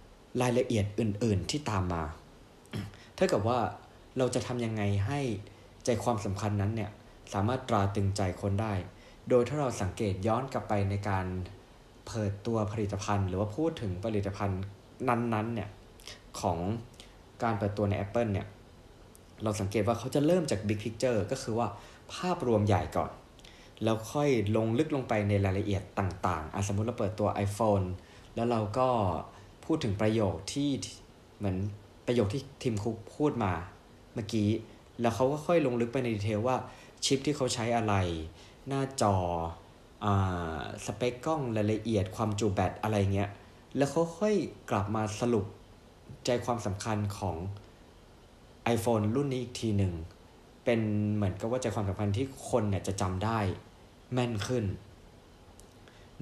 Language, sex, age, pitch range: Thai, male, 20-39, 100-120 Hz